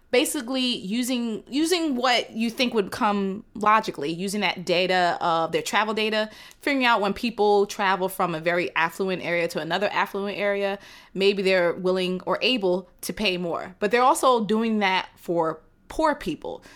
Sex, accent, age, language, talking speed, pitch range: female, American, 20-39, English, 165 wpm, 175-215 Hz